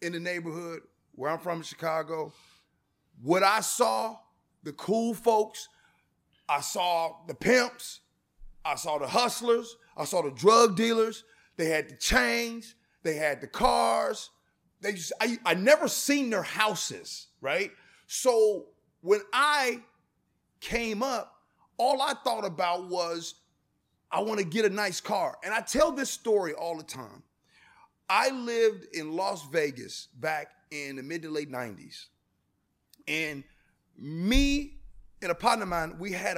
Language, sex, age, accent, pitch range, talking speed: English, male, 30-49, American, 170-250 Hz, 150 wpm